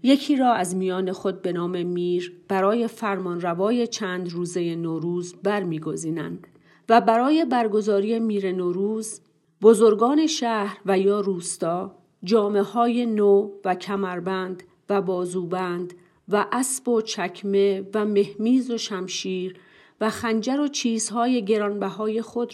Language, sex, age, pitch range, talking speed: Persian, female, 40-59, 180-220 Hz, 115 wpm